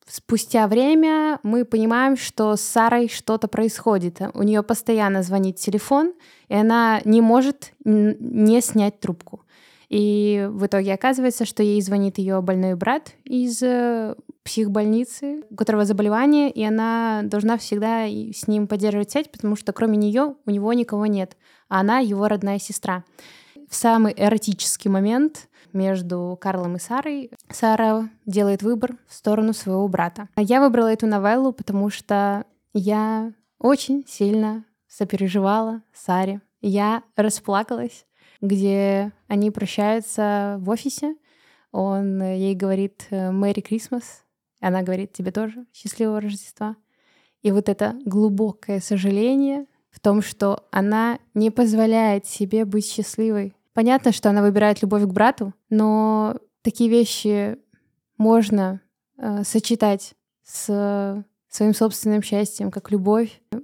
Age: 20-39